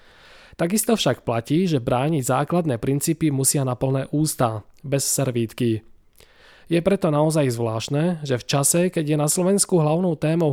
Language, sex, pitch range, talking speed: Slovak, male, 125-165 Hz, 140 wpm